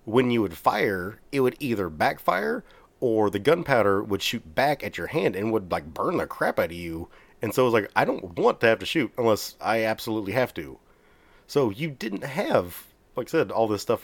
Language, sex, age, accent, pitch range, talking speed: English, male, 30-49, American, 100-120 Hz, 225 wpm